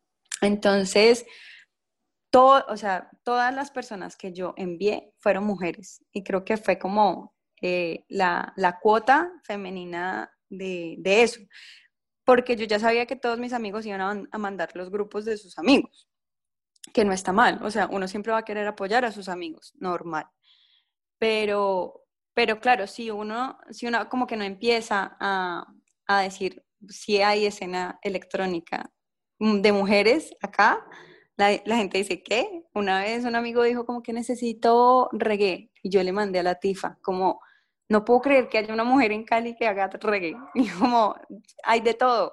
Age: 10-29